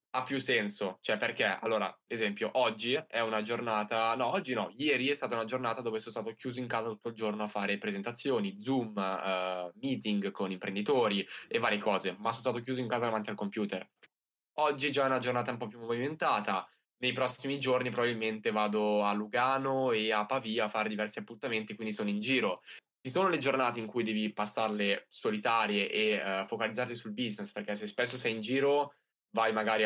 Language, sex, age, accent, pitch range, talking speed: Italian, male, 10-29, native, 105-125 Hz, 195 wpm